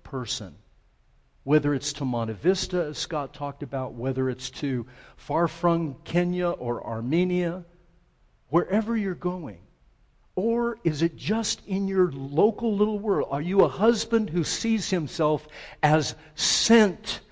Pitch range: 145-200 Hz